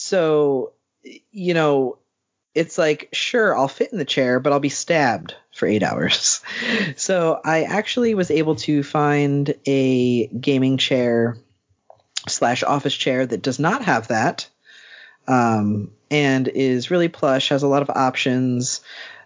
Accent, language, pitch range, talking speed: American, English, 120-150 Hz, 145 wpm